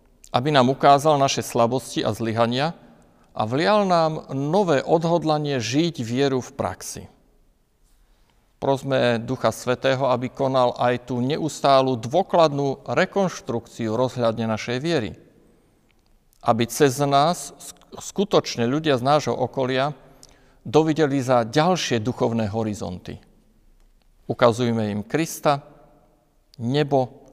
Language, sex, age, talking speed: Slovak, male, 50-69, 100 wpm